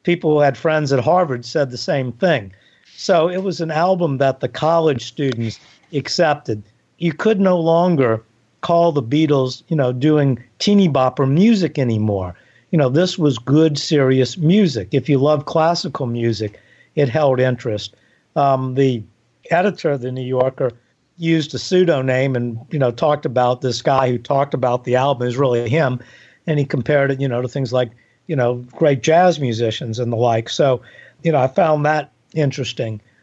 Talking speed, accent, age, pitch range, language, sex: 175 wpm, American, 50-69, 120-155 Hz, English, male